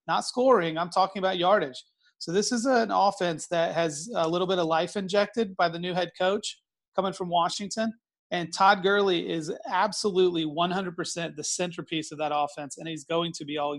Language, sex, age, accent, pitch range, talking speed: English, male, 30-49, American, 160-190 Hz, 190 wpm